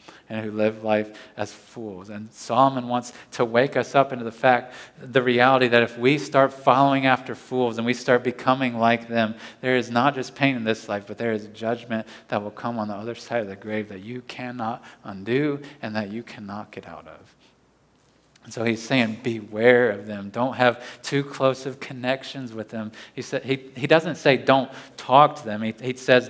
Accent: American